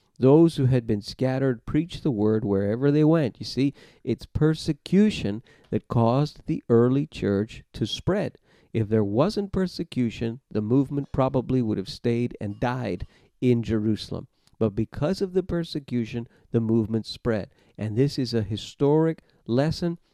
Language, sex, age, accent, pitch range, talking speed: English, male, 50-69, American, 110-140 Hz, 150 wpm